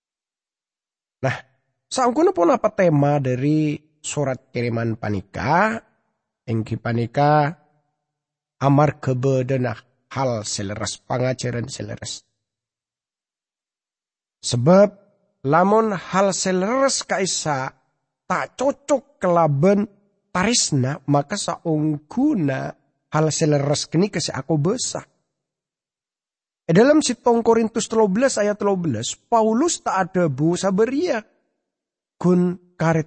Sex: male